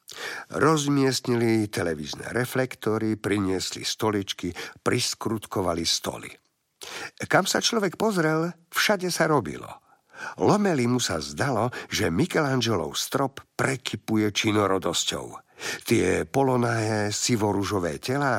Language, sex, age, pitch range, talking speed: Slovak, male, 50-69, 100-140 Hz, 90 wpm